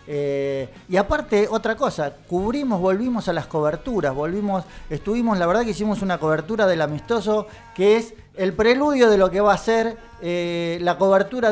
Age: 40-59